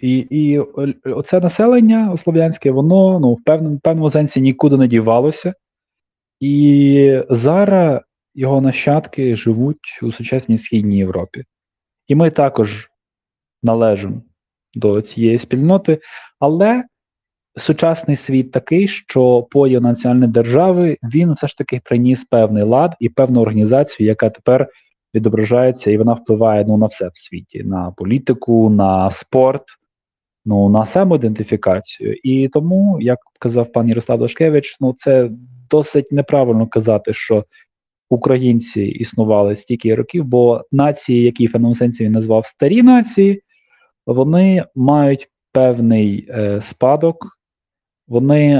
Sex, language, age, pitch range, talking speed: male, Ukrainian, 20-39, 115-150 Hz, 120 wpm